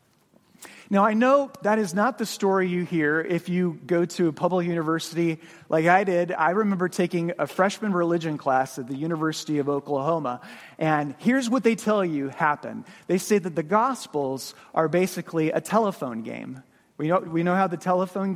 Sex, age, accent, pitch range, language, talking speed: male, 30-49, American, 160-205 Hz, English, 185 wpm